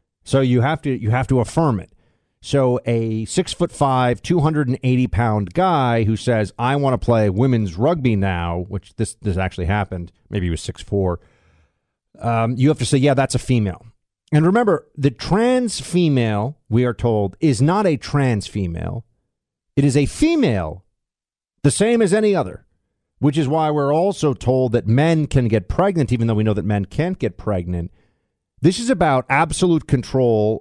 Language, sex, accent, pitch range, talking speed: English, male, American, 105-145 Hz, 180 wpm